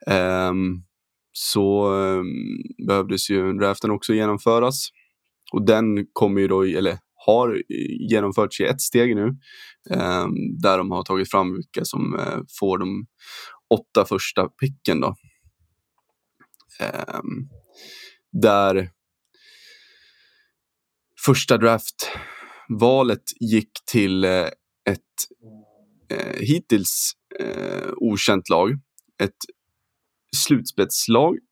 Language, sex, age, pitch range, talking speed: Swedish, male, 20-39, 100-125 Hz, 95 wpm